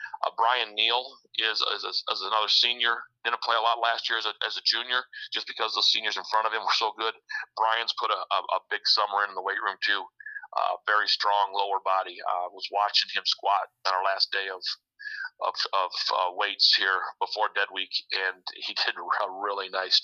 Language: English